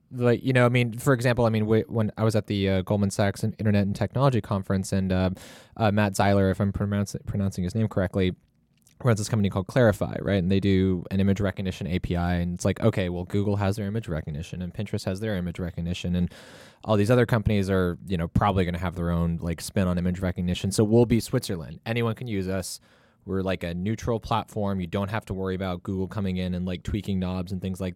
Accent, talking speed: American, 235 wpm